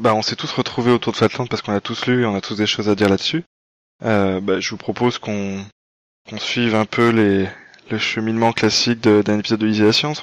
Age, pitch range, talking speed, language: 20-39, 100-115 Hz, 250 wpm, French